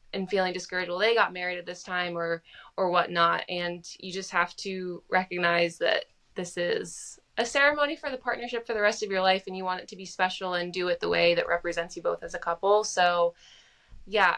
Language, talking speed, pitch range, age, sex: English, 225 wpm, 175-205 Hz, 20-39, female